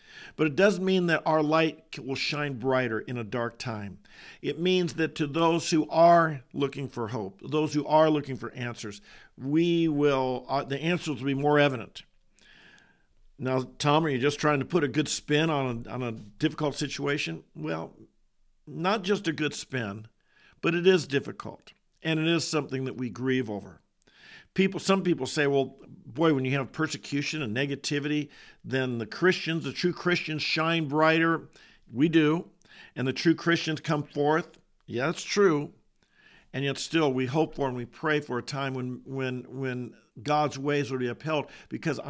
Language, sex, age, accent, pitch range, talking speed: English, male, 50-69, American, 130-160 Hz, 180 wpm